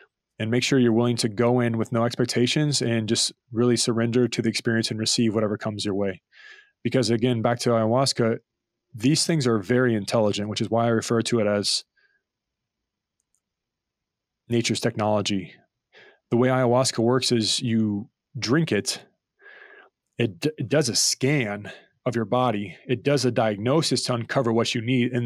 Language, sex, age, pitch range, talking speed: English, male, 20-39, 110-125 Hz, 165 wpm